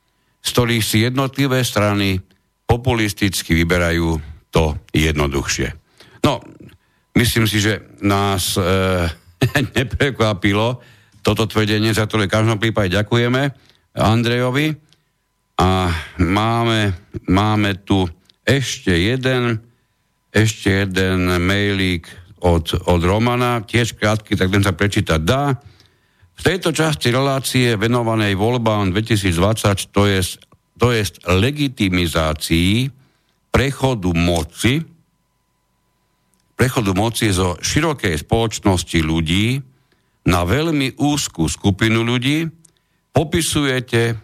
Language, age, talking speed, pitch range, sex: Slovak, 60-79, 90 wpm, 90-125 Hz, male